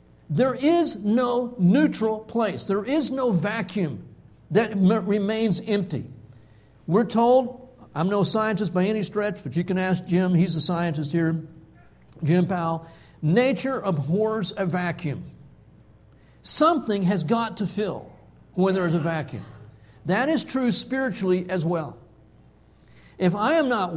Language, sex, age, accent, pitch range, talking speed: English, male, 50-69, American, 170-240 Hz, 140 wpm